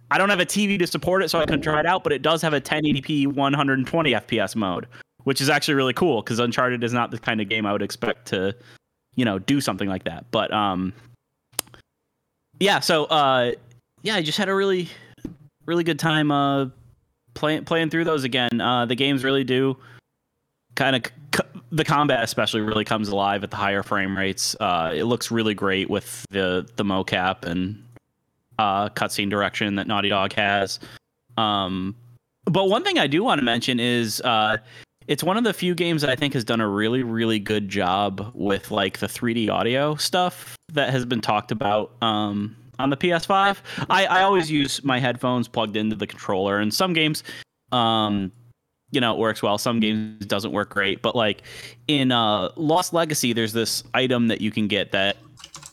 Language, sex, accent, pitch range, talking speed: English, male, American, 105-150 Hz, 195 wpm